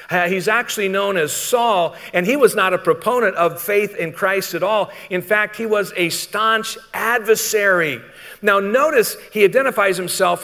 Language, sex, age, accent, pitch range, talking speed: English, male, 50-69, American, 170-215 Hz, 165 wpm